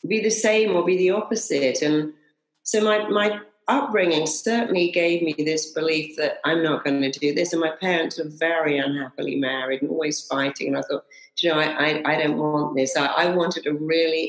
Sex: female